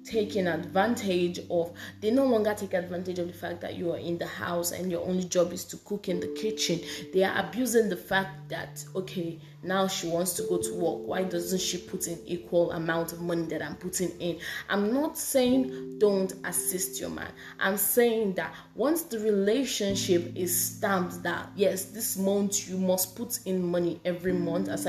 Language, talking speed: English, 195 wpm